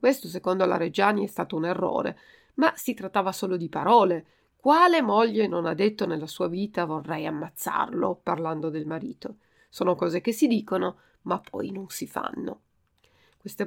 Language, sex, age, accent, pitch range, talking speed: Italian, female, 40-59, native, 175-225 Hz, 165 wpm